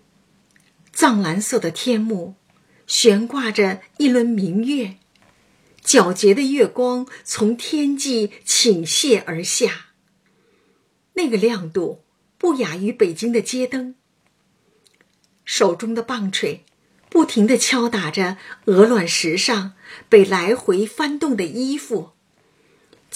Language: Chinese